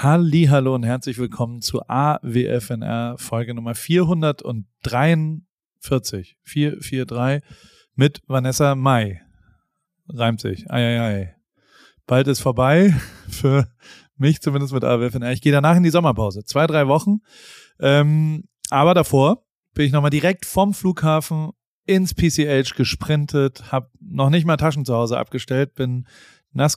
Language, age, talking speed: German, 30-49, 125 wpm